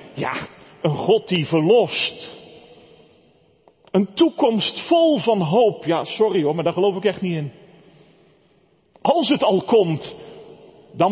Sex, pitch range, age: male, 145-205 Hz, 40-59